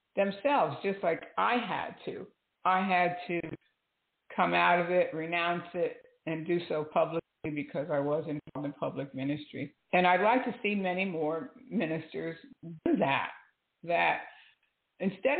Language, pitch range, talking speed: English, 160-210 Hz, 145 wpm